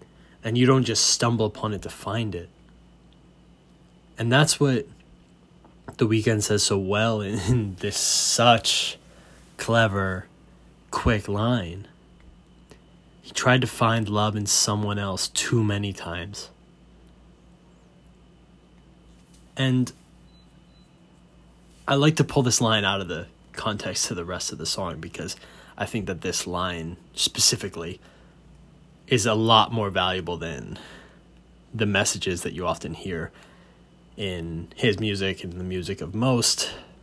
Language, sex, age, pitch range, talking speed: English, male, 20-39, 95-130 Hz, 130 wpm